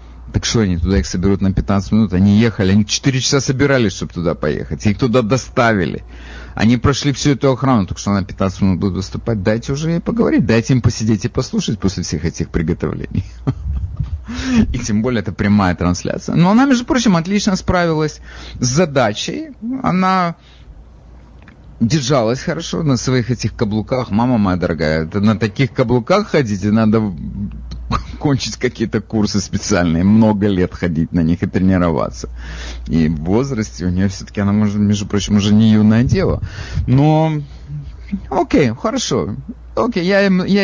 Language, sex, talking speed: English, male, 155 wpm